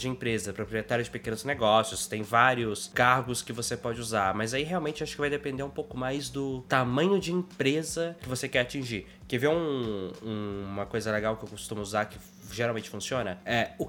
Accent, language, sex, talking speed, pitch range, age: Brazilian, Portuguese, male, 205 wpm, 120-175 Hz, 20-39